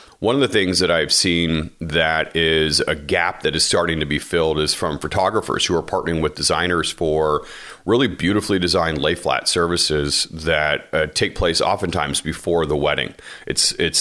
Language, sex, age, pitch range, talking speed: English, male, 40-59, 75-85 Hz, 175 wpm